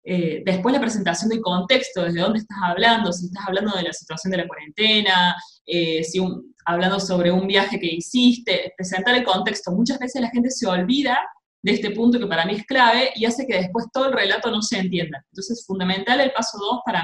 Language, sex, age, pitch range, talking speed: Spanish, female, 20-39, 180-245 Hz, 215 wpm